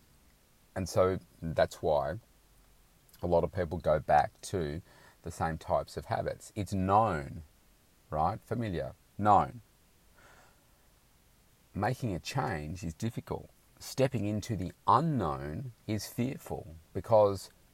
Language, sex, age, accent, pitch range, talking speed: English, male, 40-59, Australian, 85-105 Hz, 110 wpm